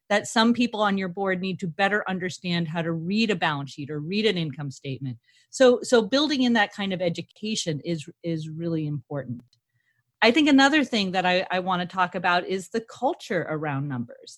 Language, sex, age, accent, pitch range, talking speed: English, female, 40-59, American, 175-235 Hz, 205 wpm